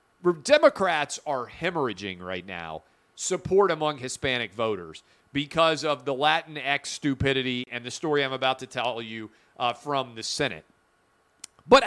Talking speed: 135 wpm